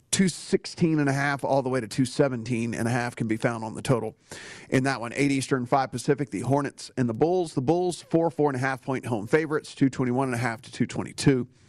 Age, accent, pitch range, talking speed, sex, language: 40-59, American, 120-145 Hz, 175 wpm, male, English